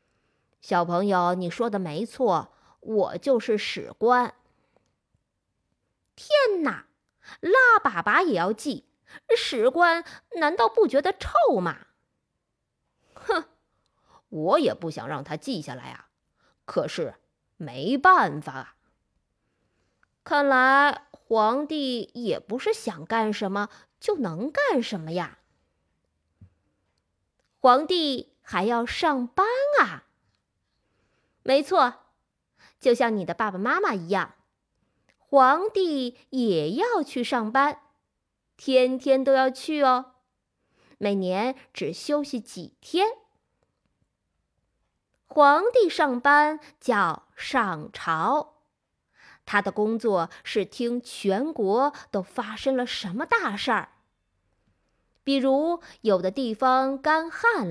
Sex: female